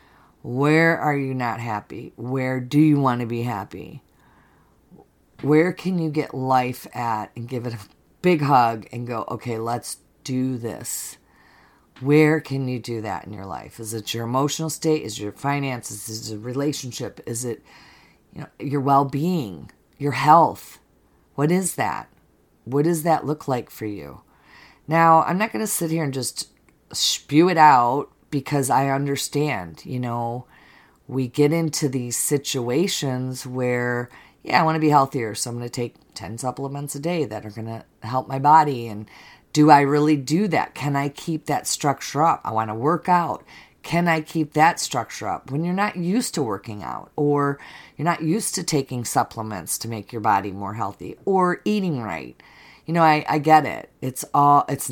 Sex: female